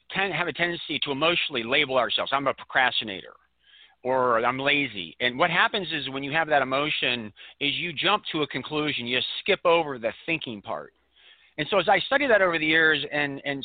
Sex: male